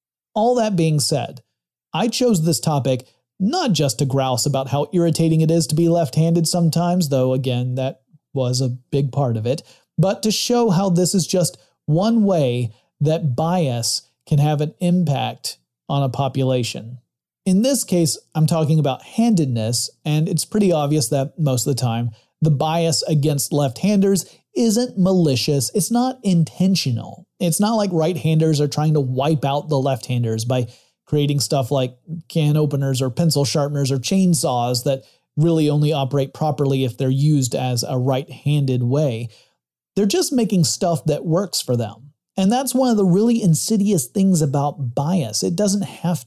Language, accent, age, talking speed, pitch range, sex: English, American, 30-49, 165 wpm, 135-175 Hz, male